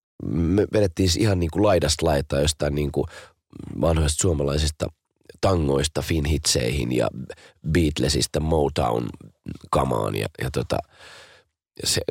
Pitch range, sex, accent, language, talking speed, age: 75-95 Hz, male, native, Finnish, 100 wpm, 30-49